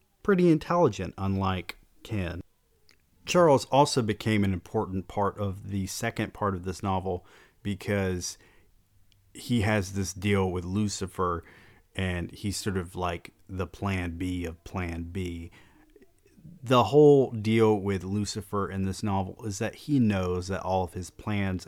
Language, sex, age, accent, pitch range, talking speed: English, male, 30-49, American, 90-110 Hz, 145 wpm